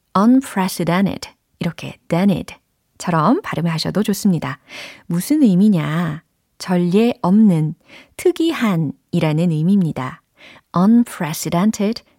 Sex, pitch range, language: female, 165-245 Hz, Korean